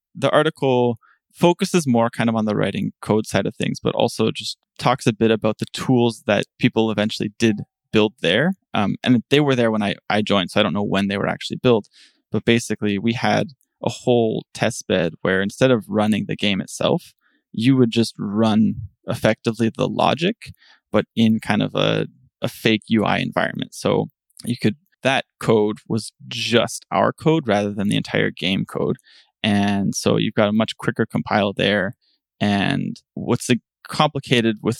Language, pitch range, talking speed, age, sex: English, 110-130 Hz, 180 wpm, 20-39, male